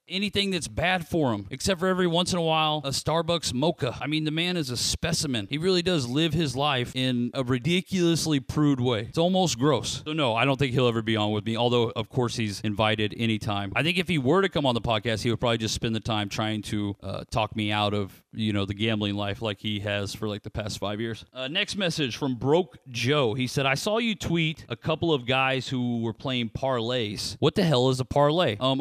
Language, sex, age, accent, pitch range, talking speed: English, male, 40-59, American, 110-150 Hz, 245 wpm